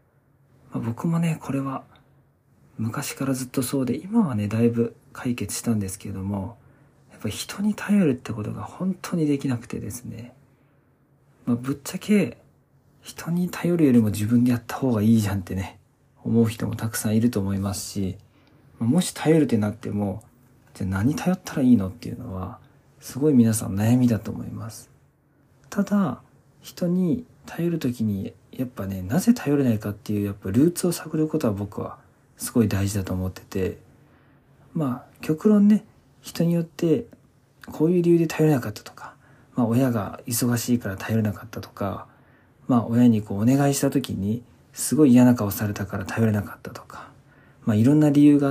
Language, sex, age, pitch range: Japanese, male, 40-59, 110-140 Hz